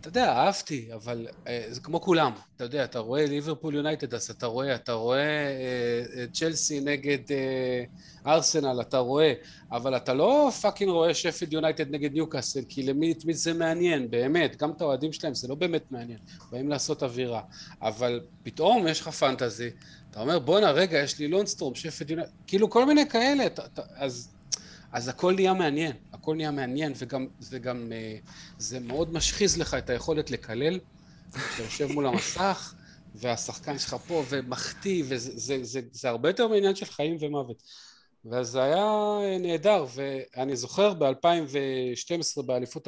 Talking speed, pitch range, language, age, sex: 165 wpm, 125-170 Hz, Hebrew, 30-49, male